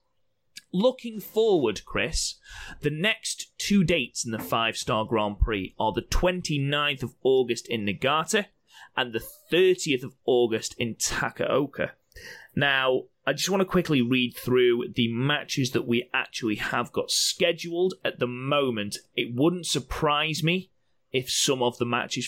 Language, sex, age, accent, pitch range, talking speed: English, male, 30-49, British, 115-160 Hz, 145 wpm